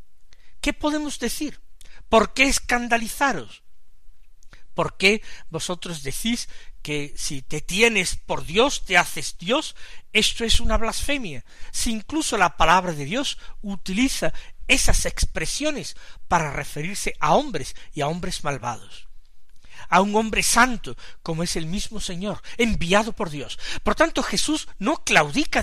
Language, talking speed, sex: Spanish, 135 wpm, male